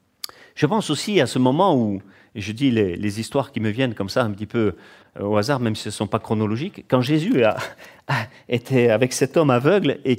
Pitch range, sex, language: 115-145 Hz, male, French